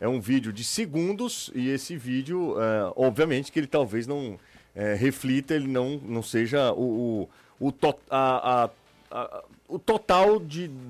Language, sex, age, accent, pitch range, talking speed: Portuguese, male, 40-59, Brazilian, 115-145 Hz, 165 wpm